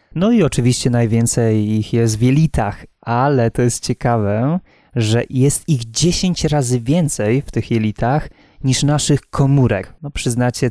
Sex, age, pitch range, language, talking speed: male, 20-39, 115-145 Hz, Polish, 145 wpm